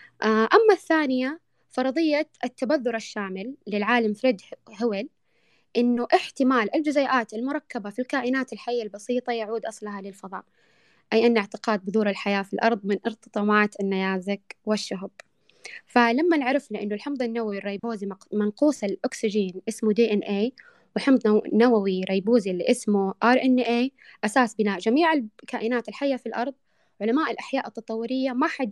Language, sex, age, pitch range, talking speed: Arabic, female, 20-39, 210-260 Hz, 120 wpm